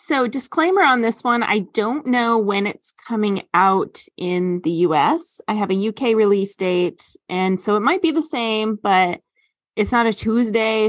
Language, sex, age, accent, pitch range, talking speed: English, female, 20-39, American, 185-235 Hz, 180 wpm